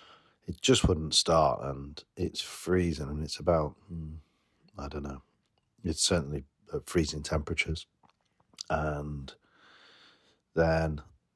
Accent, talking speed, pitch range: British, 100 wpm, 70-85 Hz